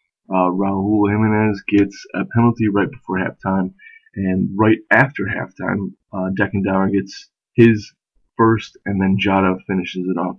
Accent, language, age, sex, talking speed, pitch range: American, English, 20-39, male, 145 wpm, 95-120 Hz